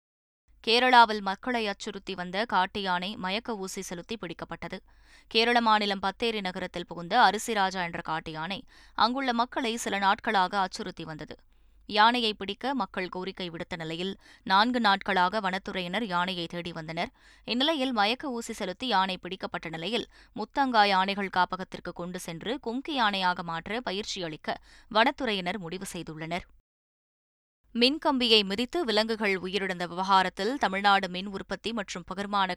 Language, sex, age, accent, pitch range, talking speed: Tamil, female, 20-39, native, 180-225 Hz, 120 wpm